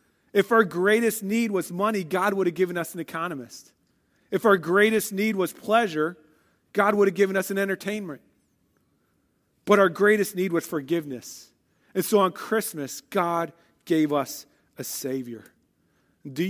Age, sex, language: 40-59, male, English